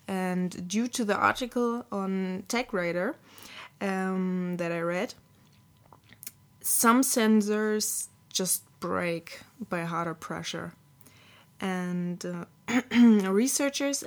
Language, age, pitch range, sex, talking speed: English, 20-39, 180-215 Hz, female, 85 wpm